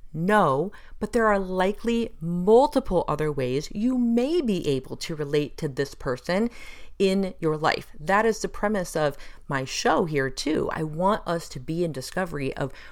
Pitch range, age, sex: 140-190 Hz, 40-59, female